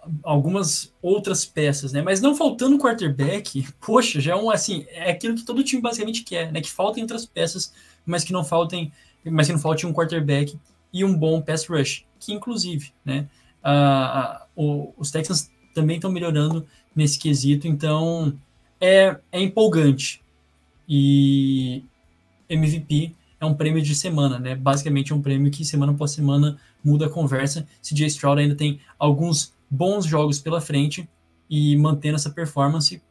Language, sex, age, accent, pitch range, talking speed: Portuguese, male, 20-39, Brazilian, 140-170 Hz, 165 wpm